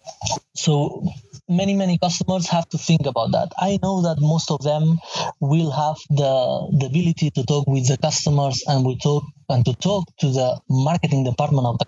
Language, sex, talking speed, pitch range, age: English, male, 185 wpm, 130-155 Hz, 20-39